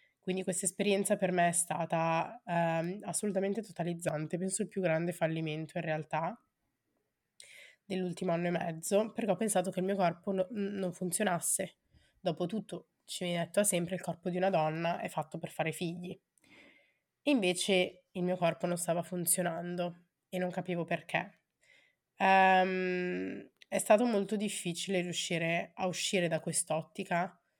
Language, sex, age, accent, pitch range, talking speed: Italian, female, 20-39, native, 170-190 Hz, 150 wpm